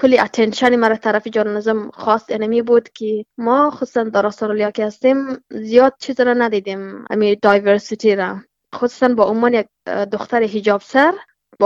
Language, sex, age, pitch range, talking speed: Persian, female, 20-39, 210-250 Hz, 145 wpm